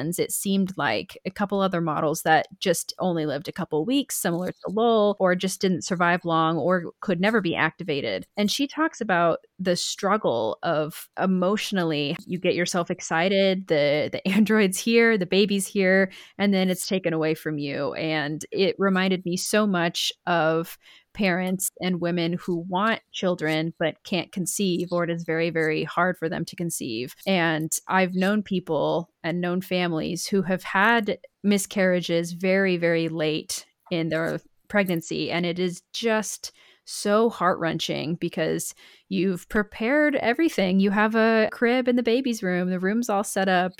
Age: 20-39